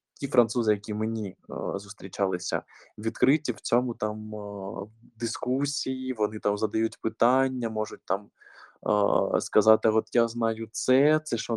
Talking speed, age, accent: 135 wpm, 20-39, native